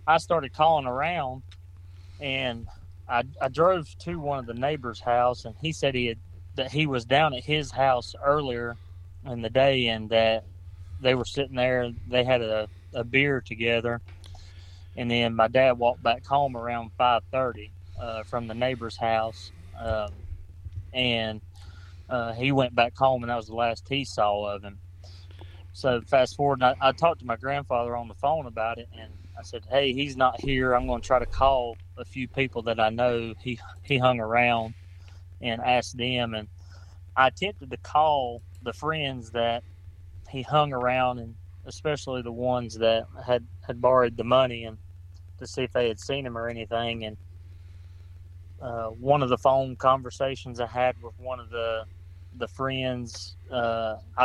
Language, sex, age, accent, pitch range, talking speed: English, male, 30-49, American, 90-130 Hz, 180 wpm